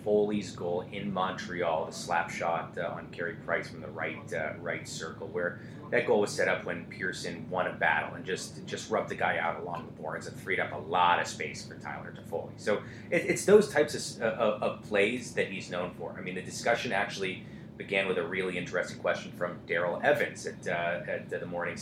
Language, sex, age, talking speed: English, male, 30-49, 215 wpm